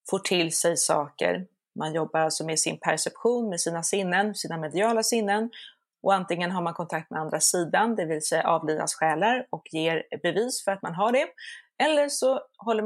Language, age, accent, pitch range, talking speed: Swedish, 30-49, native, 165-205 Hz, 185 wpm